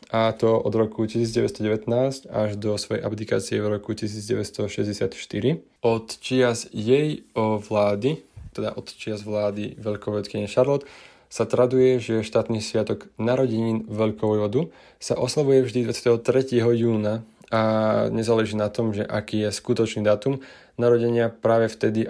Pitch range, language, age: 110-120 Hz, Slovak, 20-39